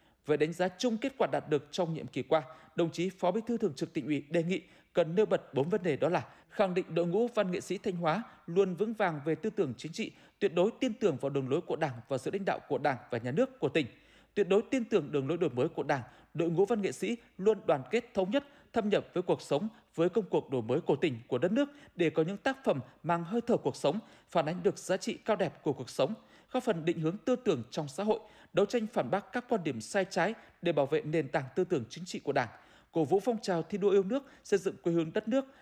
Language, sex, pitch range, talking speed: Vietnamese, male, 160-215 Hz, 280 wpm